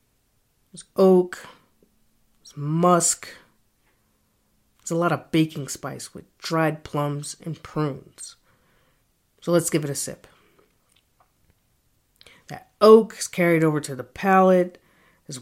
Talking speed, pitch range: 115 wpm, 145-175 Hz